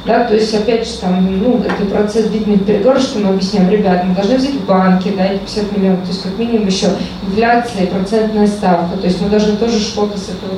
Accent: native